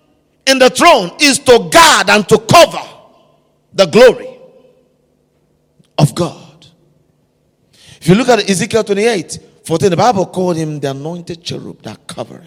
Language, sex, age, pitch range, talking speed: English, male, 50-69, 130-180 Hz, 140 wpm